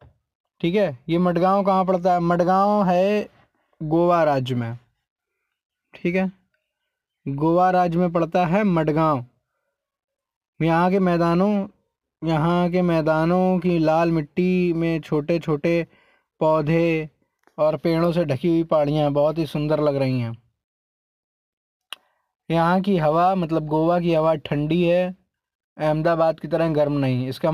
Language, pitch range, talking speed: Hindi, 150-185 Hz, 135 wpm